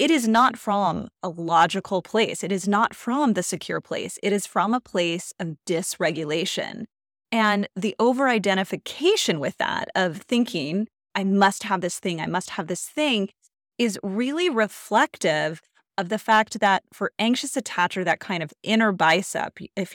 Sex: female